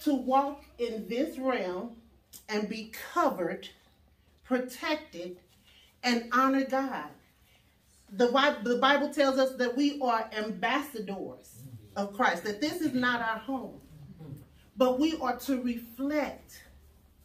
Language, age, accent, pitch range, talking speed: English, 40-59, American, 215-270 Hz, 115 wpm